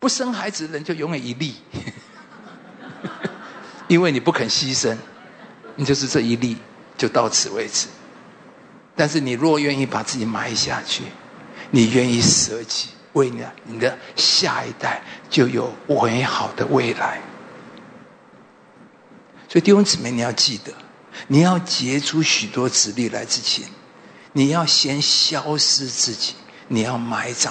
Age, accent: 50-69, Chinese